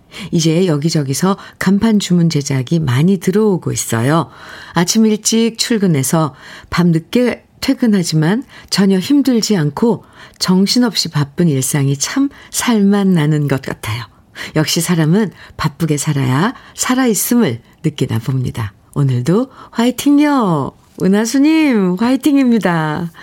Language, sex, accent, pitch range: Korean, female, native, 150-220 Hz